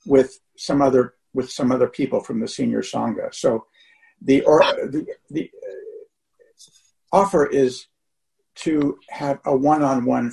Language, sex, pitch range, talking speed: English, male, 115-160 Hz, 120 wpm